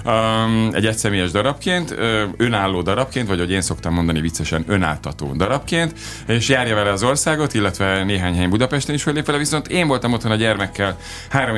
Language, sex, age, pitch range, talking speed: Hungarian, male, 30-49, 95-125 Hz, 180 wpm